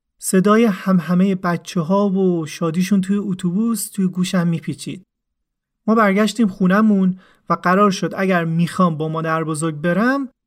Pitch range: 165-200 Hz